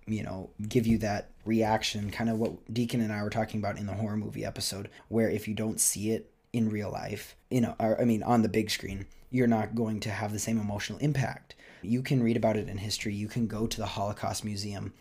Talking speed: 240 wpm